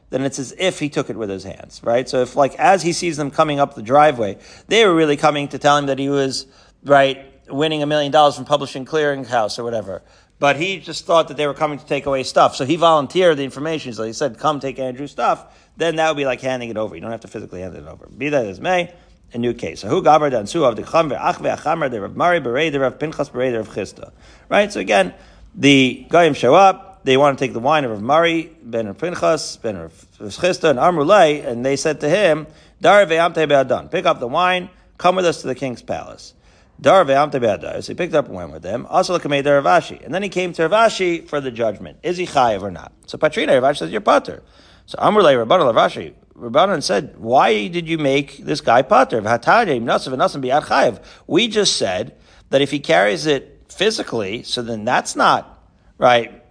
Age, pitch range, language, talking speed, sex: 40-59, 130-165 Hz, English, 195 wpm, male